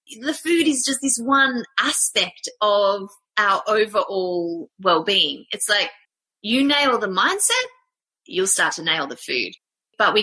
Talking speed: 145 wpm